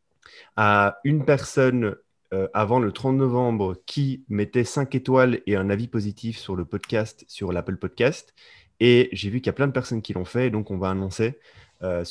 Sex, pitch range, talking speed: male, 95-125 Hz, 200 wpm